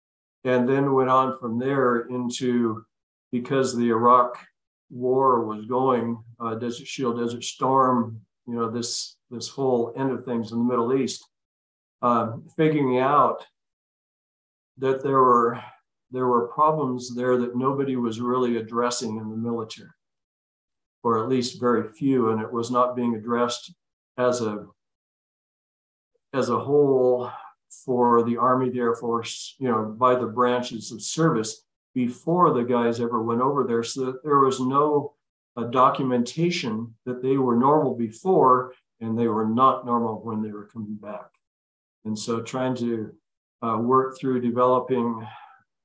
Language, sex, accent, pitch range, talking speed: English, male, American, 115-130 Hz, 150 wpm